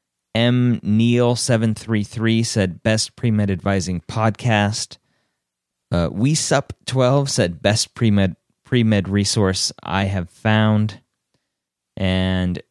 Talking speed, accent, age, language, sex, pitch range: 110 wpm, American, 30-49, English, male, 95-115 Hz